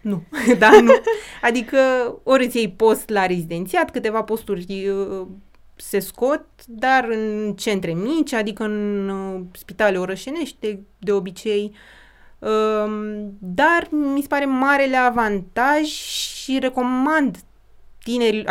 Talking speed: 115 wpm